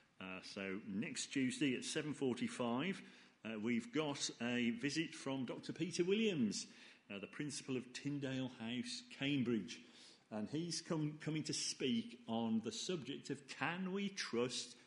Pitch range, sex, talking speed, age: 115-175 Hz, male, 140 wpm, 40-59